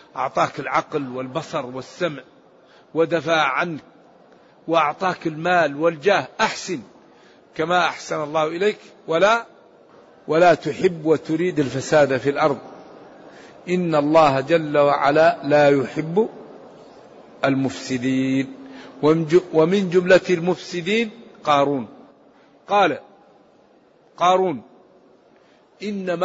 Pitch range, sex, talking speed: 155-210 Hz, male, 80 wpm